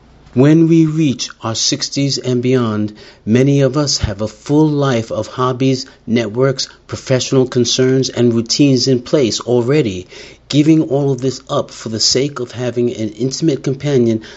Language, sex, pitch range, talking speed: English, male, 110-135 Hz, 155 wpm